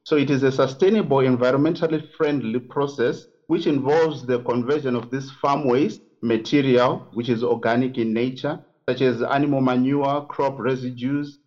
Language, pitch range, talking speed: English, 120-140 Hz, 145 wpm